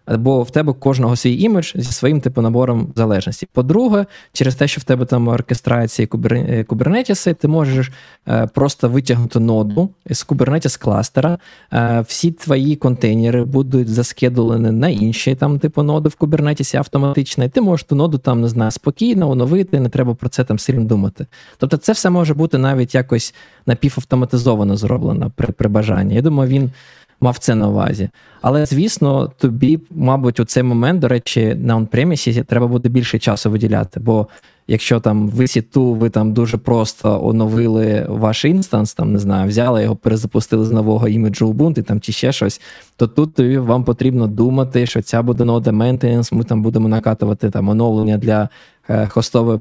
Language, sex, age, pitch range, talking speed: Ukrainian, male, 20-39, 110-140 Hz, 170 wpm